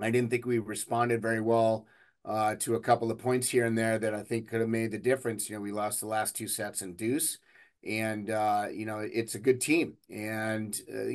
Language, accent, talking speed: English, American, 235 wpm